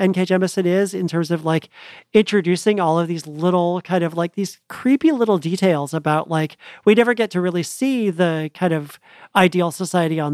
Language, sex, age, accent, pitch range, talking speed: English, male, 40-59, American, 170-205 Hz, 190 wpm